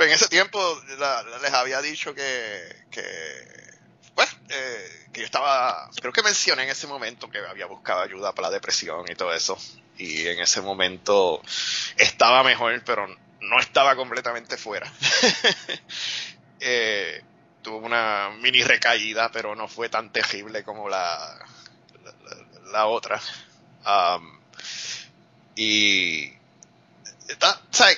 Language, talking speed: Spanish, 125 wpm